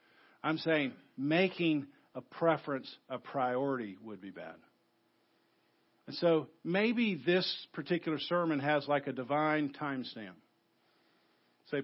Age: 50-69